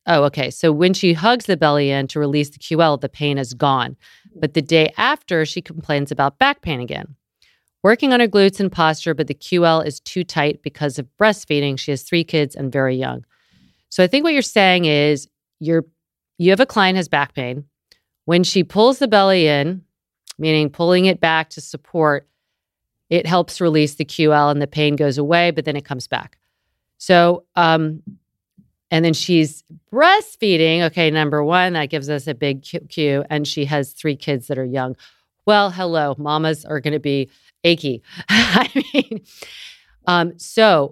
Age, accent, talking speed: 40-59, American, 190 wpm